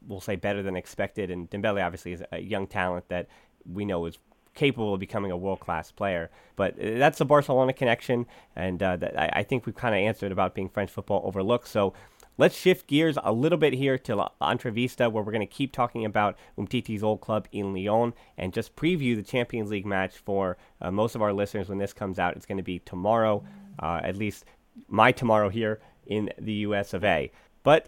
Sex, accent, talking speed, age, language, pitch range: male, American, 215 wpm, 30-49, English, 100-125 Hz